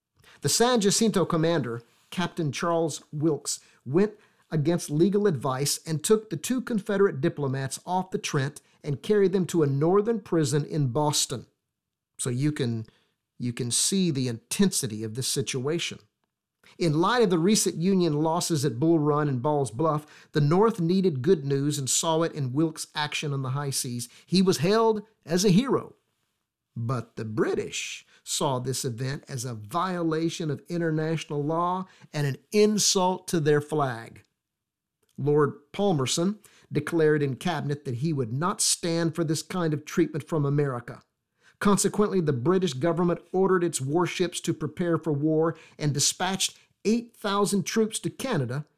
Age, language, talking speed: 50-69, English, 155 wpm